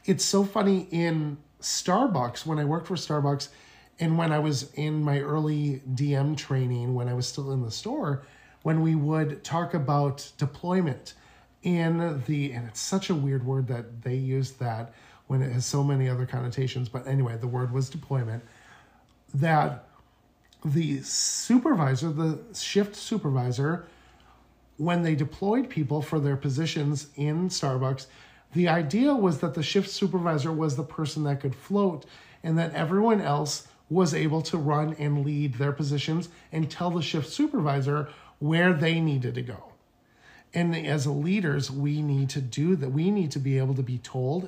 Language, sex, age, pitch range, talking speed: English, male, 40-59, 135-165 Hz, 165 wpm